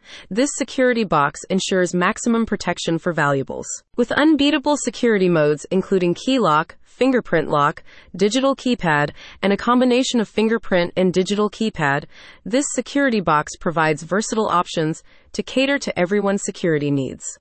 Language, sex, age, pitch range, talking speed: English, female, 30-49, 170-230 Hz, 135 wpm